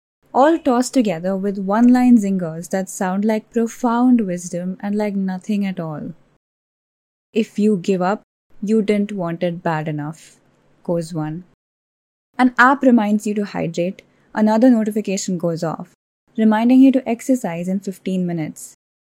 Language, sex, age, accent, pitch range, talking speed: English, female, 10-29, Indian, 190-245 Hz, 140 wpm